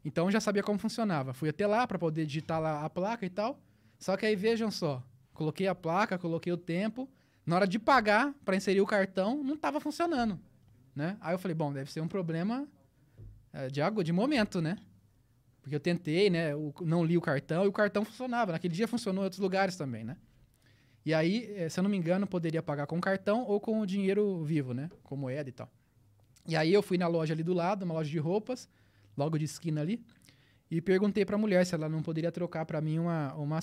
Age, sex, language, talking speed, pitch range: 20-39, male, Portuguese, 225 wpm, 145-200 Hz